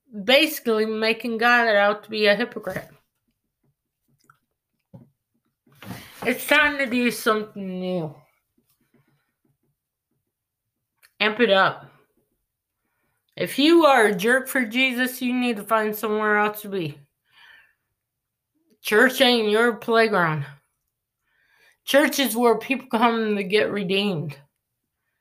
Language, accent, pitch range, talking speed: English, American, 175-230 Hz, 105 wpm